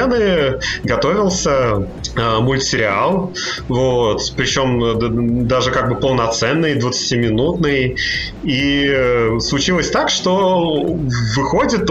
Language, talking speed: Russian, 70 wpm